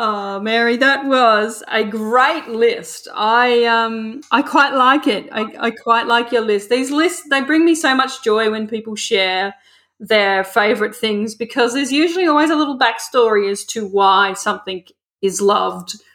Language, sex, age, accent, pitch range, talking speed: English, female, 40-59, Australian, 210-245 Hz, 170 wpm